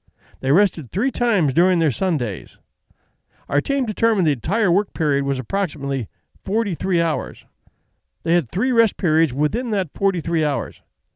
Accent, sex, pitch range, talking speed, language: American, male, 135-200 Hz, 145 wpm, English